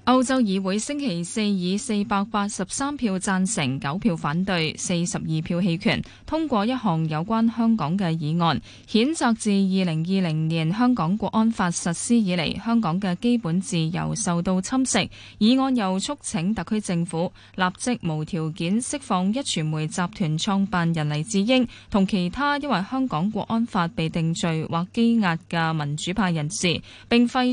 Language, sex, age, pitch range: Chinese, female, 20-39, 175-230 Hz